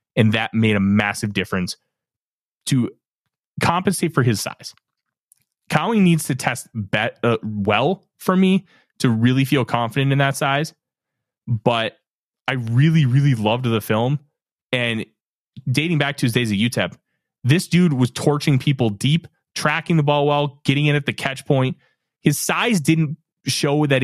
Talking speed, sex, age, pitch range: 155 wpm, male, 20-39, 120-160 Hz